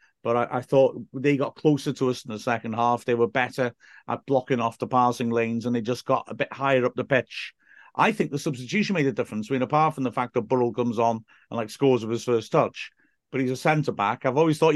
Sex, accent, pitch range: male, British, 120-140 Hz